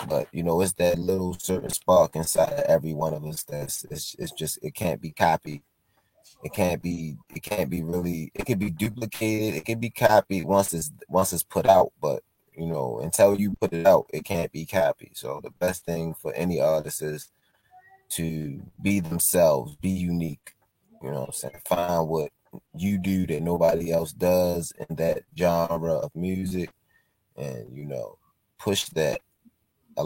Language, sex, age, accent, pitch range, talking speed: English, male, 20-39, American, 80-95 Hz, 185 wpm